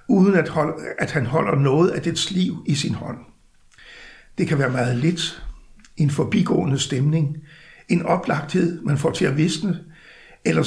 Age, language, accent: 60-79, Danish, native